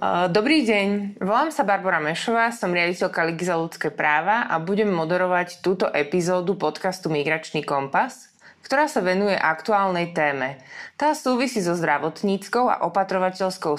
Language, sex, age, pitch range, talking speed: Slovak, female, 20-39, 150-195 Hz, 135 wpm